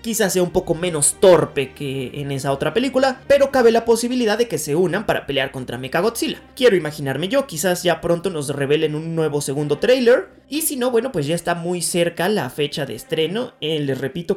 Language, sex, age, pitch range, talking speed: Spanish, male, 30-49, 150-215 Hz, 215 wpm